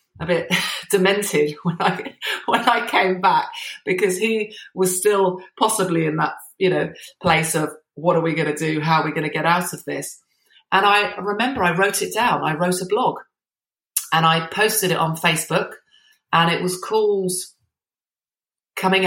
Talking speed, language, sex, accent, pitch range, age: 180 wpm, English, female, British, 150-190 Hz, 30-49